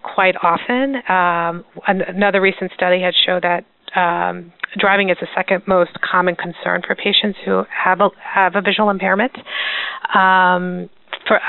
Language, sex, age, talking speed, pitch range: English, female, 30-49, 145 wpm, 180-205 Hz